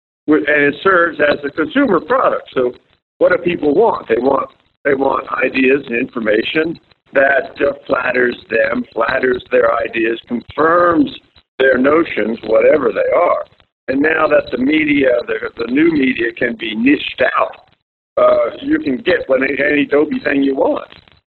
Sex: male